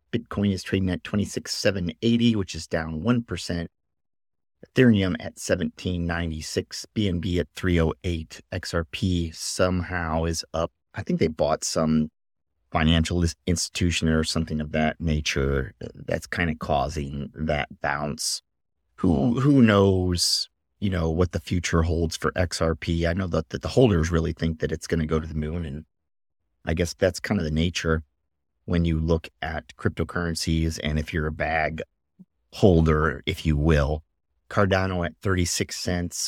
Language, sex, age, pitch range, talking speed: English, male, 30-49, 80-95 Hz, 145 wpm